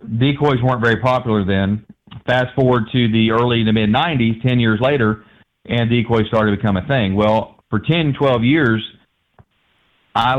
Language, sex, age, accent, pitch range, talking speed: English, male, 40-59, American, 110-130 Hz, 165 wpm